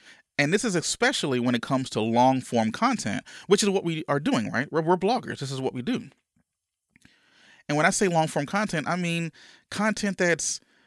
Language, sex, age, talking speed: English, male, 30-49, 205 wpm